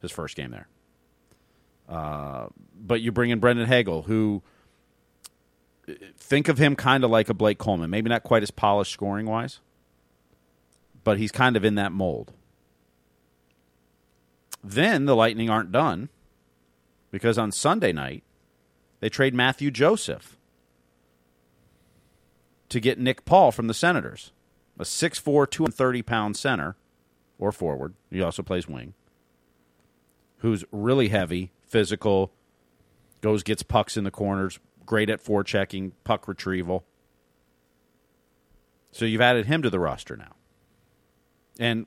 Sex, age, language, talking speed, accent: male, 40-59, English, 125 wpm, American